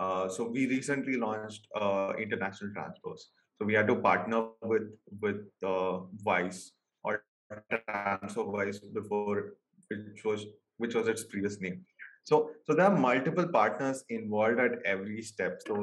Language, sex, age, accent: English, male, 20-39, Indian